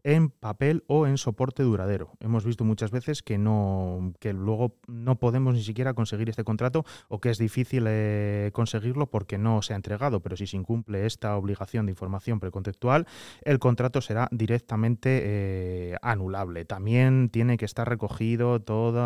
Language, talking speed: Spanish, 165 wpm